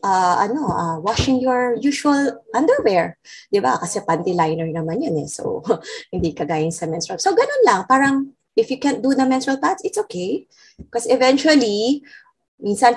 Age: 20-39